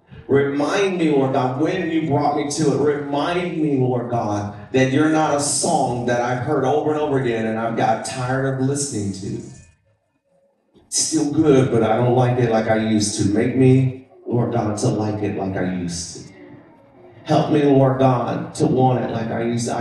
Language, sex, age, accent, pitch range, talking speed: English, male, 40-59, American, 120-160 Hz, 205 wpm